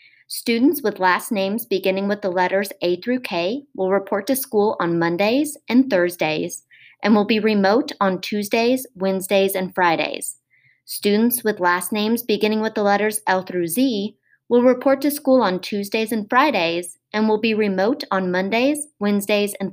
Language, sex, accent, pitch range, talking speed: English, female, American, 190-250 Hz, 165 wpm